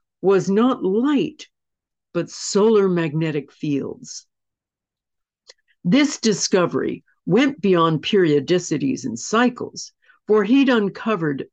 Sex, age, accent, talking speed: female, 50-69, American, 90 wpm